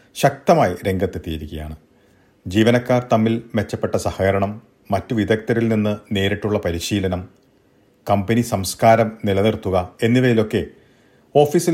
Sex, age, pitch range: male, 40-59, 95-125 Hz